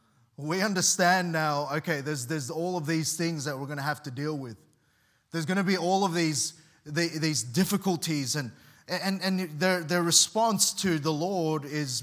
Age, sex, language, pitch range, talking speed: 30-49, male, English, 150-180 Hz, 190 wpm